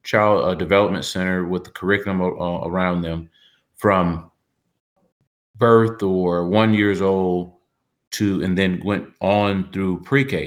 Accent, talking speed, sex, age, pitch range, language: American, 130 wpm, male, 30-49, 95-115 Hz, English